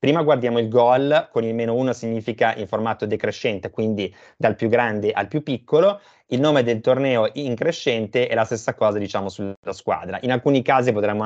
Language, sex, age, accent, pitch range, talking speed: Italian, male, 20-39, native, 105-130 Hz, 190 wpm